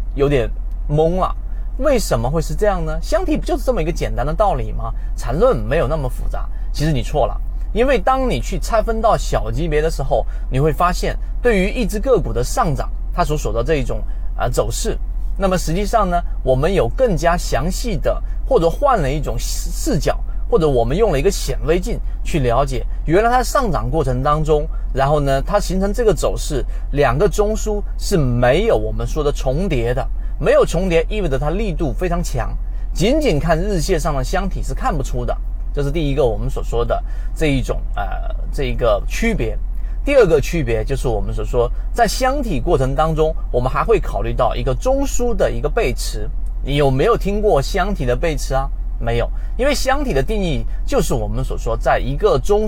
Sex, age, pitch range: male, 30-49, 125-195 Hz